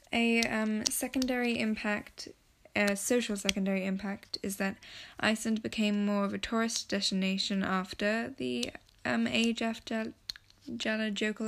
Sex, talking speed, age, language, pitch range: female, 120 wpm, 10-29, English, 195-225 Hz